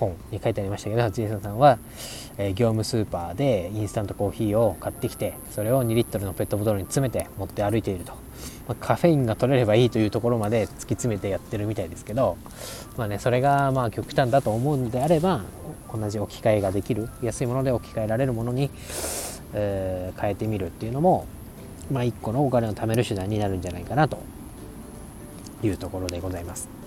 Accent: native